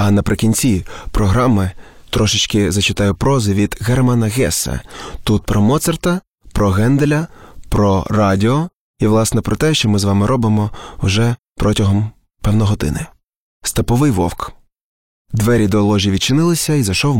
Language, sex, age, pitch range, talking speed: Ukrainian, male, 20-39, 100-130 Hz, 130 wpm